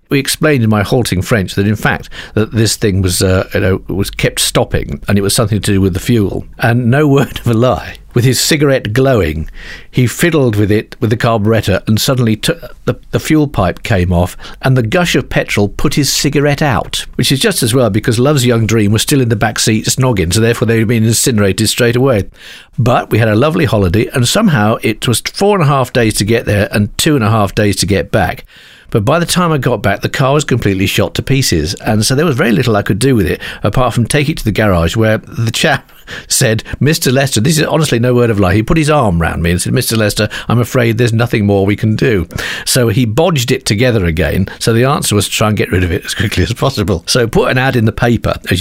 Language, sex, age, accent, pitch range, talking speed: English, male, 50-69, British, 105-130 Hz, 255 wpm